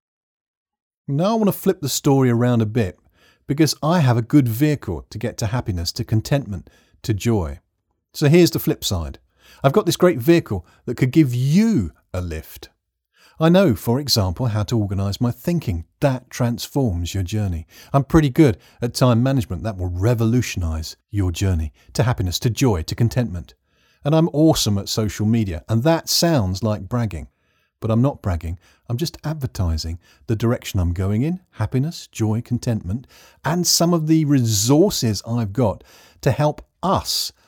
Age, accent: 50-69, British